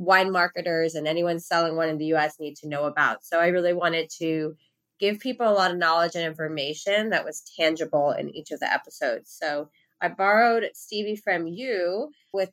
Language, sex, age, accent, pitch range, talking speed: English, female, 20-39, American, 155-185 Hz, 195 wpm